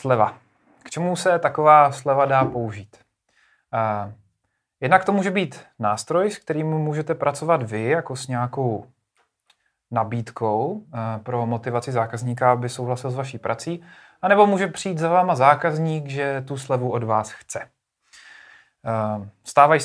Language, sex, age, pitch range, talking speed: Czech, male, 30-49, 125-155 Hz, 130 wpm